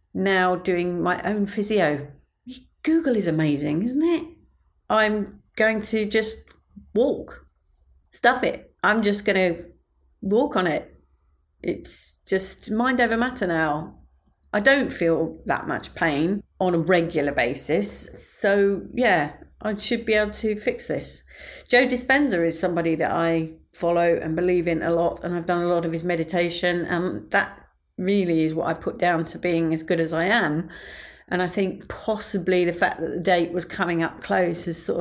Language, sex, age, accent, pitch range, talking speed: English, female, 40-59, British, 160-205 Hz, 170 wpm